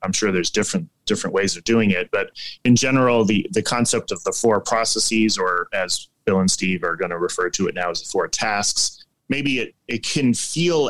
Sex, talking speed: male, 220 wpm